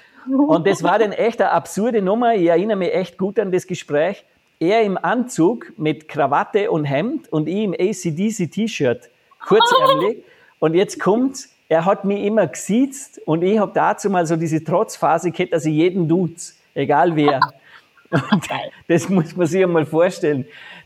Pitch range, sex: 155-190 Hz, male